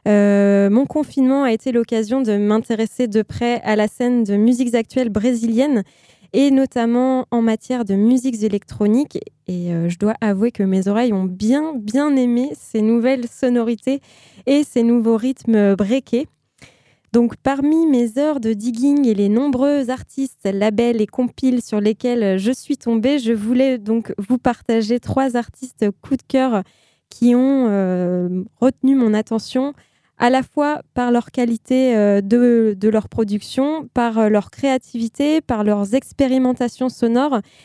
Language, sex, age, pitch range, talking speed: French, female, 20-39, 215-255 Hz, 150 wpm